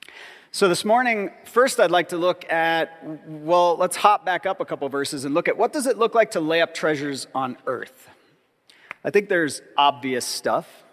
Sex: male